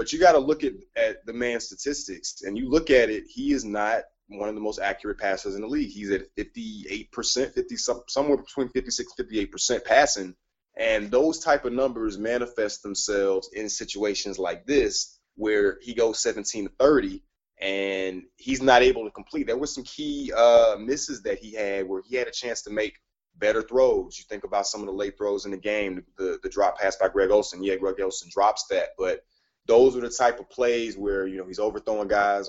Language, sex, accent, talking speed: English, male, American, 215 wpm